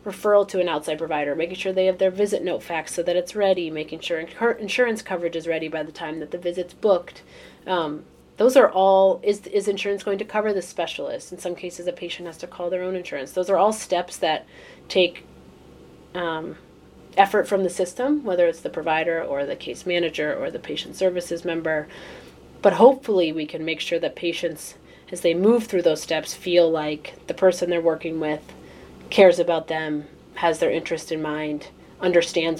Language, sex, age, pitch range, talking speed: English, female, 30-49, 160-190 Hz, 195 wpm